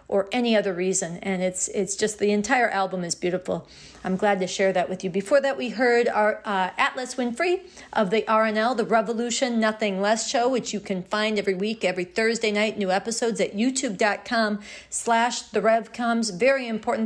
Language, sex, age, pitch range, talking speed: English, female, 40-59, 200-235 Hz, 185 wpm